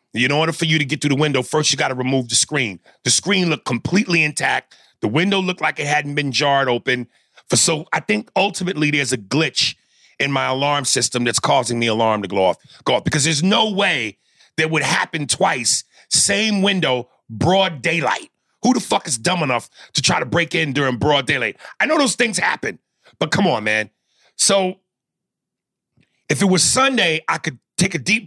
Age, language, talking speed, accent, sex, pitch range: 30-49, English, 205 wpm, American, male, 125-170 Hz